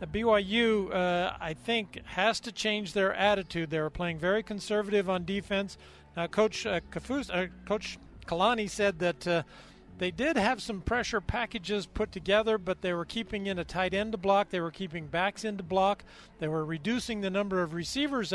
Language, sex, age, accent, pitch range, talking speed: English, male, 40-59, American, 180-215 Hz, 195 wpm